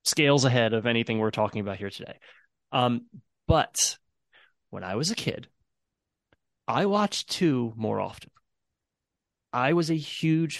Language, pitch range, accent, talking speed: English, 115-145 Hz, American, 140 wpm